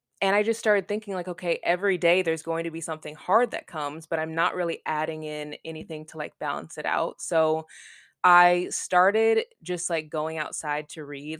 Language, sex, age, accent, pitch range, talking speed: English, female, 20-39, American, 155-185 Hz, 200 wpm